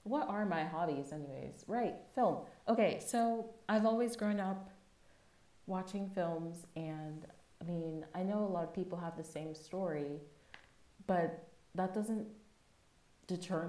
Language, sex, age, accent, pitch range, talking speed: English, female, 20-39, American, 150-185 Hz, 140 wpm